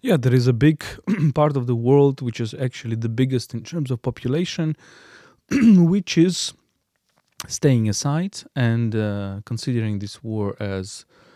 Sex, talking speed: male, 150 wpm